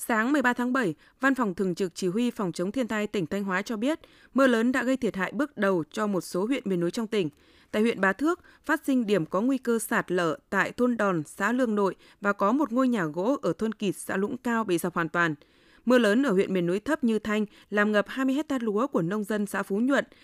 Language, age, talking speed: Vietnamese, 20-39, 265 wpm